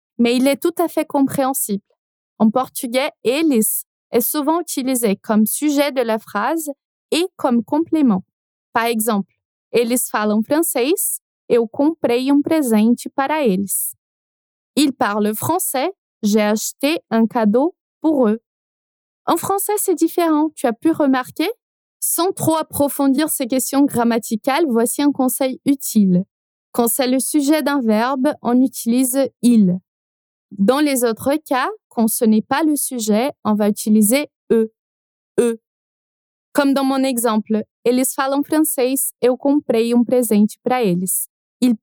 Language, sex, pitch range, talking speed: Portuguese, female, 225-290 Hz, 155 wpm